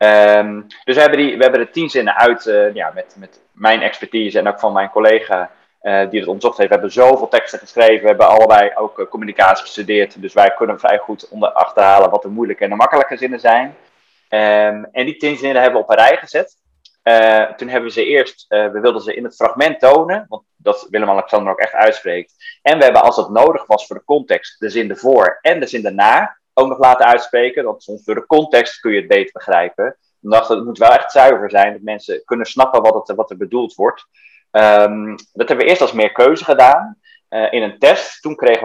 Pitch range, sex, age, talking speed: 105-145 Hz, male, 20-39, 225 wpm